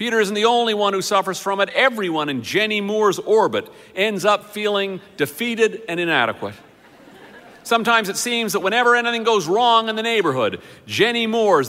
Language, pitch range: English, 160-215 Hz